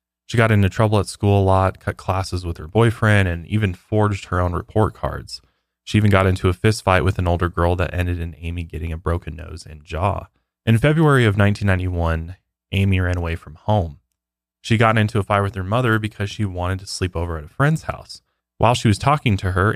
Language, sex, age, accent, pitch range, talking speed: English, male, 20-39, American, 85-105 Hz, 225 wpm